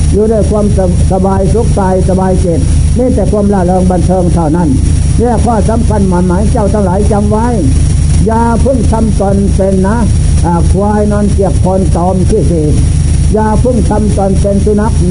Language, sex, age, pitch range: Thai, male, 60-79, 75-95 Hz